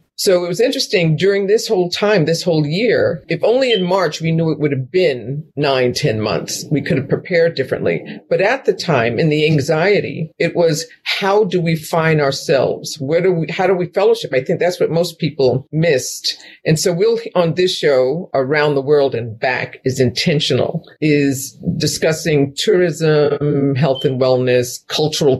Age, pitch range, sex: 50-69, 140-175 Hz, female